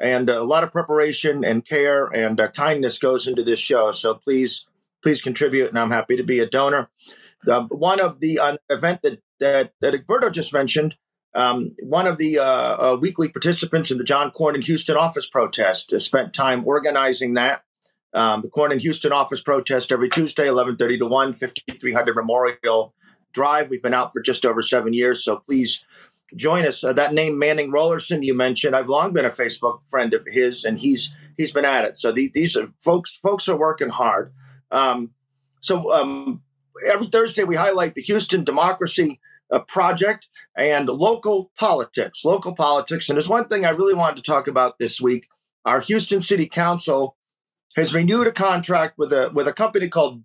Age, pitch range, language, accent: 40-59, 130-180 Hz, English, American